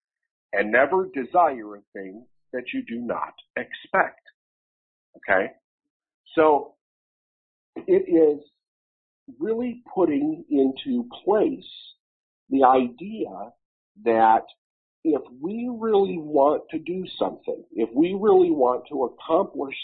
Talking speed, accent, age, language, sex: 105 wpm, American, 50-69, English, male